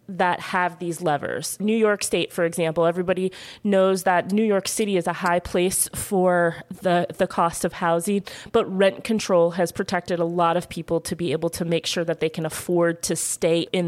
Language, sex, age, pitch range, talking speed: English, female, 20-39, 170-195 Hz, 205 wpm